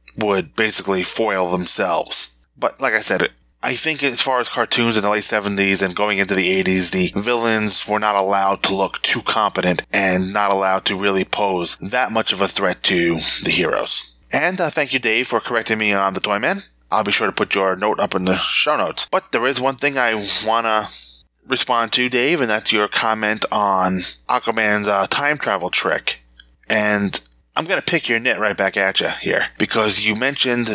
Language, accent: English, American